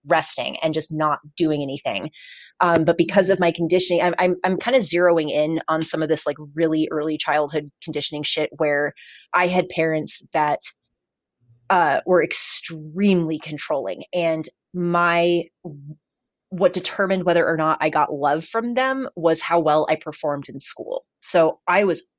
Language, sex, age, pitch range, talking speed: English, female, 30-49, 155-180 Hz, 160 wpm